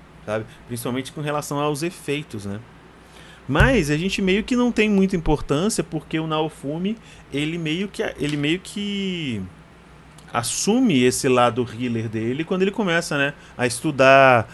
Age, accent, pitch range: 30-49, Brazilian, 120-170 Hz